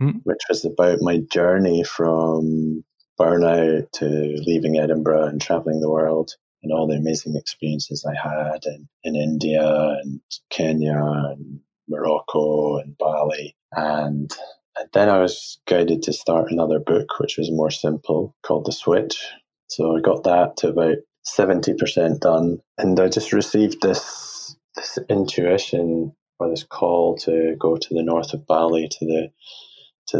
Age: 20-39